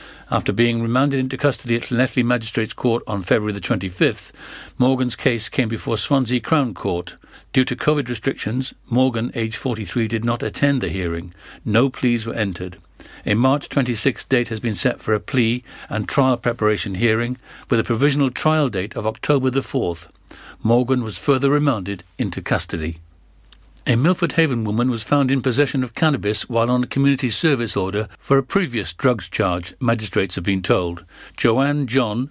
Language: English